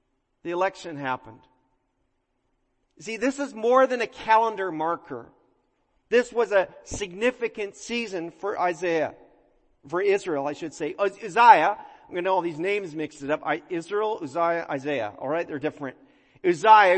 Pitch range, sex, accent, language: 160-215 Hz, male, American, English